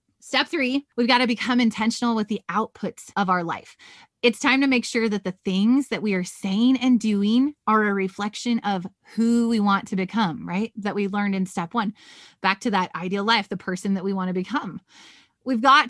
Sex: female